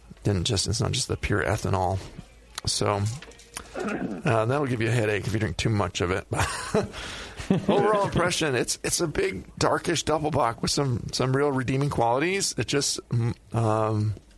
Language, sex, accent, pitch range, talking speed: English, male, American, 105-130 Hz, 165 wpm